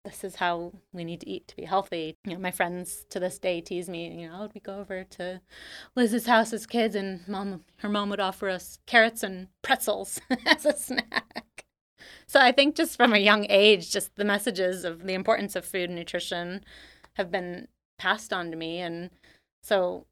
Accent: American